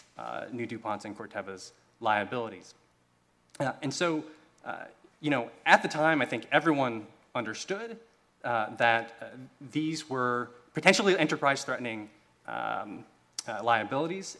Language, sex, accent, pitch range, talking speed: English, male, American, 110-160 Hz, 120 wpm